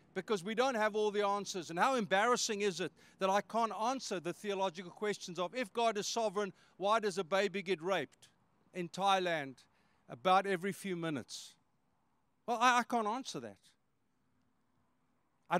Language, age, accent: English, 50-69, South African